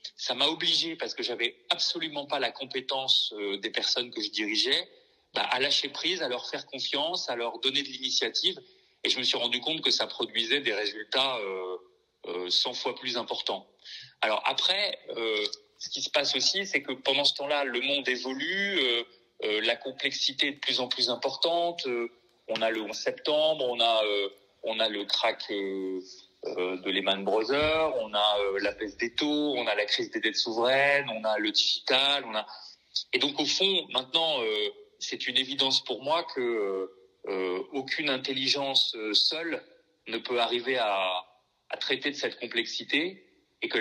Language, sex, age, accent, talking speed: French, male, 30-49, French, 175 wpm